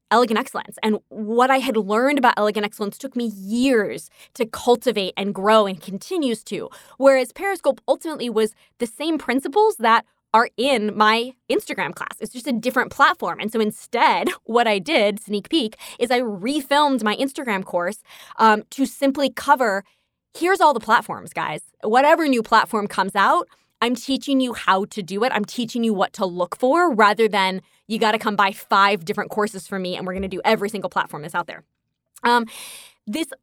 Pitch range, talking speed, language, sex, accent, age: 205-255 Hz, 190 wpm, English, female, American, 20-39